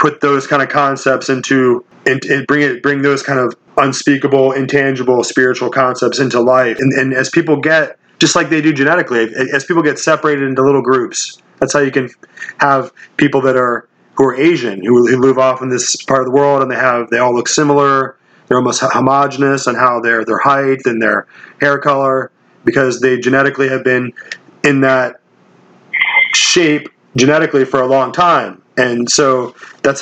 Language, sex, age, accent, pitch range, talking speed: English, male, 30-49, American, 120-140 Hz, 185 wpm